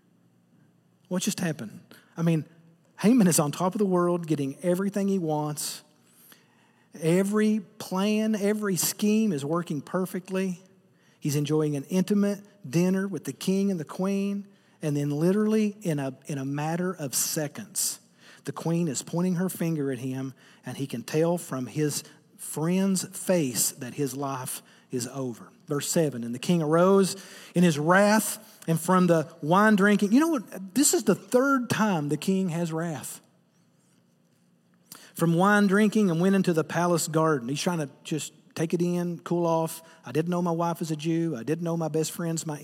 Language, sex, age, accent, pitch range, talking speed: English, male, 40-59, American, 155-190 Hz, 175 wpm